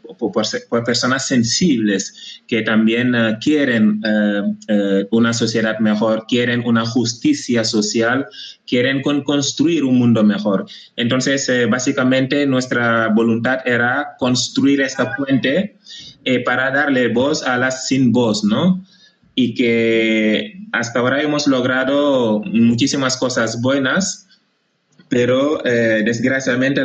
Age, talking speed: 20-39, 120 wpm